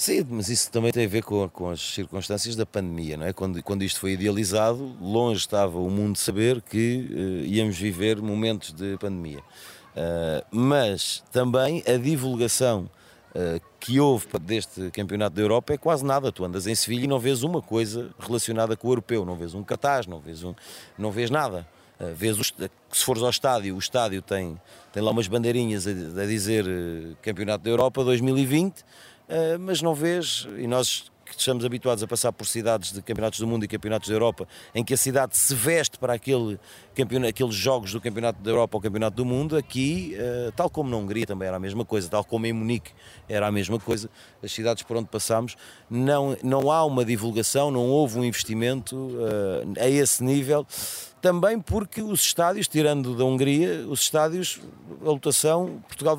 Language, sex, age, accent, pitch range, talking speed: Portuguese, male, 30-49, Portuguese, 105-135 Hz, 185 wpm